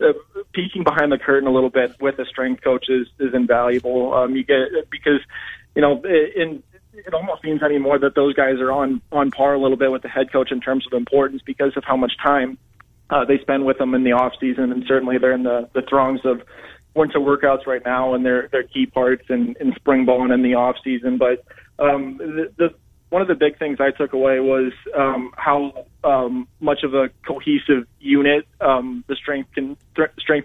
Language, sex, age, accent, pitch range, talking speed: English, male, 20-39, American, 125-140 Hz, 210 wpm